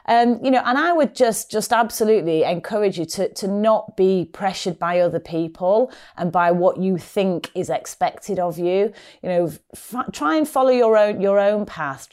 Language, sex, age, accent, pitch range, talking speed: English, female, 30-49, British, 160-205 Hz, 200 wpm